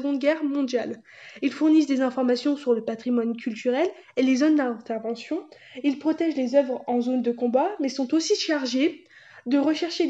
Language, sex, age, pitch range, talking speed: French, female, 20-39, 245-305 Hz, 165 wpm